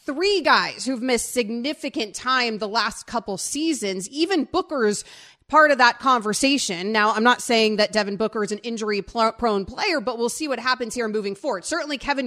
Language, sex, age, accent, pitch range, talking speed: English, female, 30-49, American, 220-275 Hz, 180 wpm